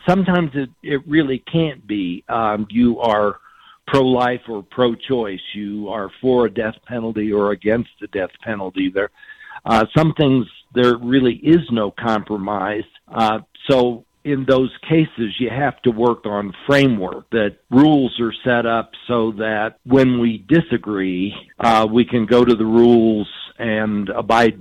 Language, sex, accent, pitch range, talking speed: English, male, American, 110-135 Hz, 150 wpm